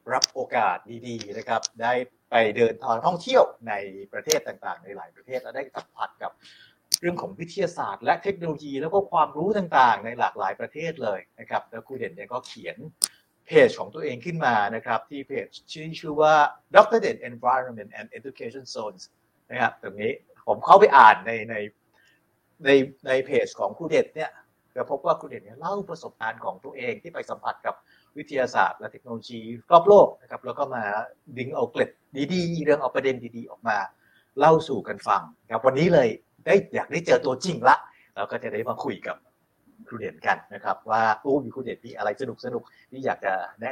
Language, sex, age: Thai, male, 60-79